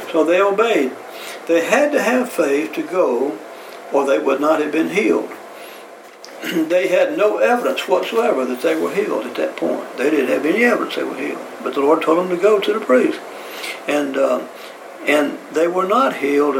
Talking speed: 195 wpm